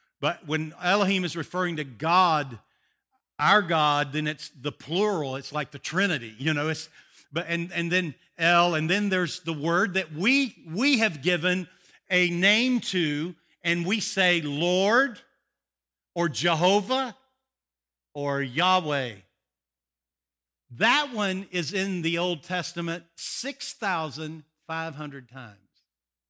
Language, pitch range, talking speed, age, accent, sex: English, 155-235 Hz, 125 wpm, 50-69, American, male